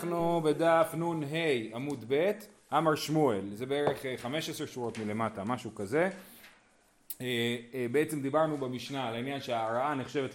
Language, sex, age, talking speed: Hebrew, male, 30-49, 120 wpm